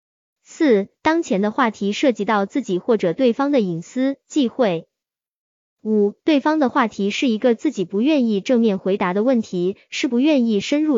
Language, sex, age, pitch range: Chinese, male, 20-39, 200-280 Hz